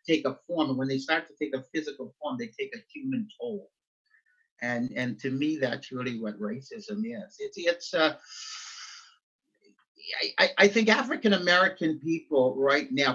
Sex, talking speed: male, 170 wpm